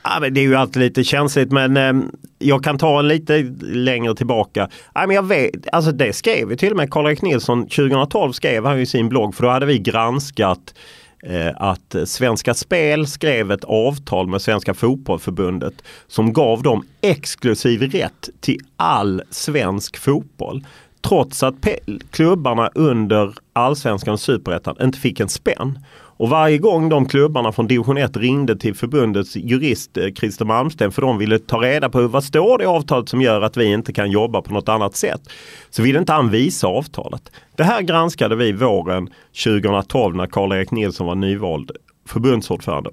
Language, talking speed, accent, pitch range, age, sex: Swedish, 165 wpm, native, 110-140 Hz, 30-49, male